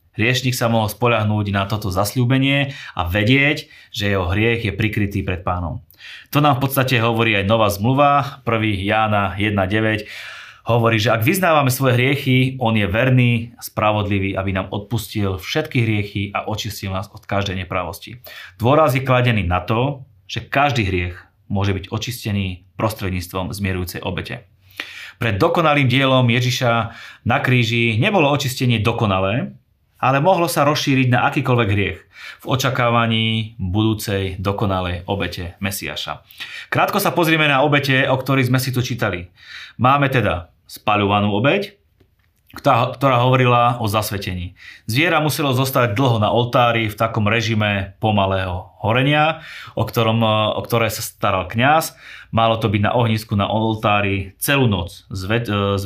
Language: Slovak